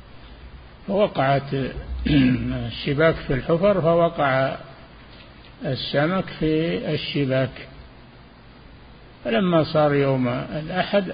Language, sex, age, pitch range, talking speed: Arabic, male, 50-69, 115-150 Hz, 65 wpm